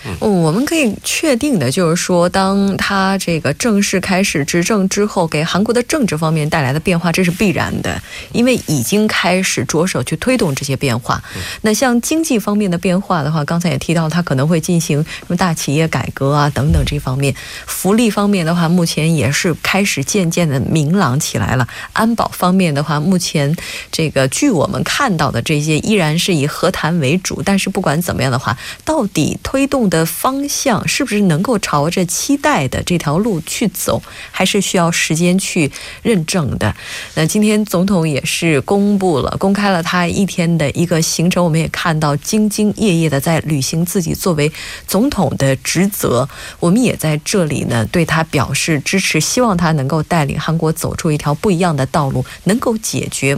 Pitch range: 150-195 Hz